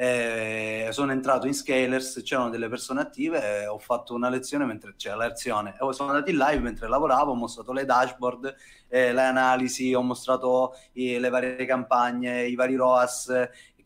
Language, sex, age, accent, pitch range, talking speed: Italian, male, 30-49, native, 120-140 Hz, 170 wpm